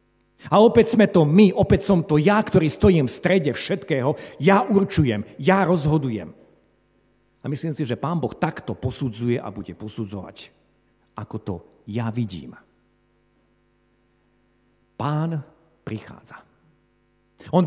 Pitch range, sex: 105-155 Hz, male